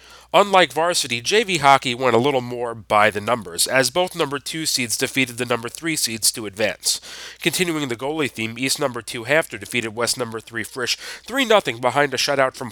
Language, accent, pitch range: English, American, 115-145 Hz